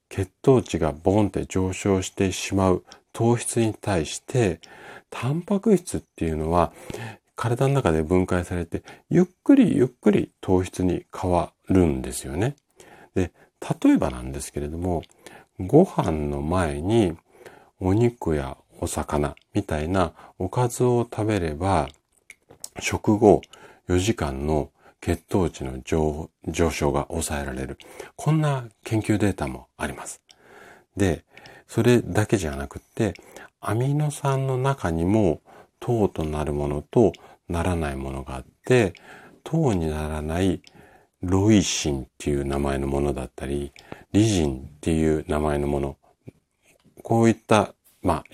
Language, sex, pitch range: Japanese, male, 75-110 Hz